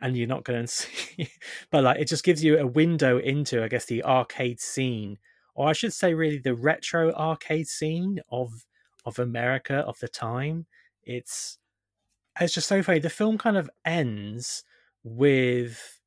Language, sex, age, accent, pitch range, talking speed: English, male, 20-39, British, 120-155 Hz, 170 wpm